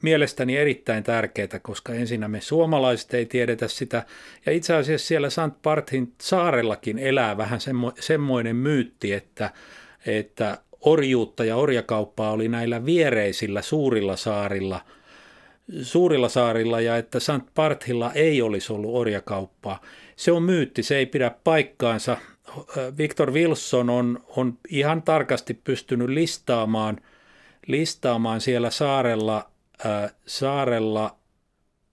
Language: Finnish